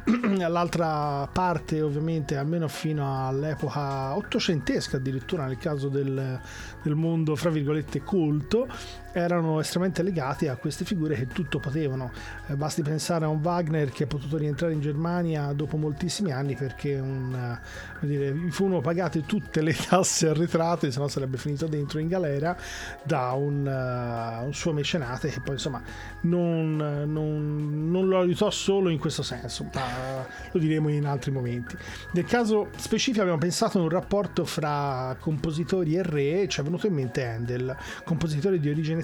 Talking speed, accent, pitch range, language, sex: 155 wpm, native, 140-170 Hz, Italian, male